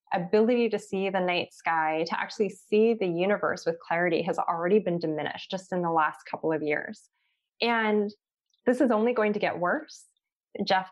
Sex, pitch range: female, 180-230 Hz